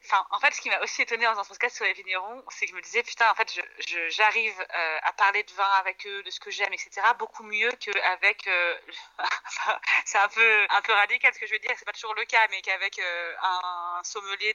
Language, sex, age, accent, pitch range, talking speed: French, female, 30-49, French, 180-230 Hz, 255 wpm